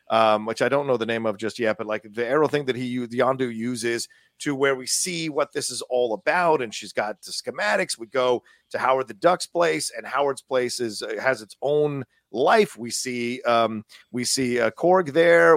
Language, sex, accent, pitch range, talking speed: English, male, American, 120-160 Hz, 215 wpm